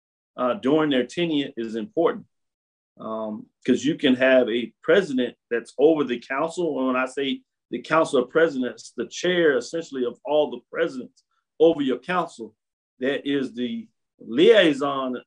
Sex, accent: male, American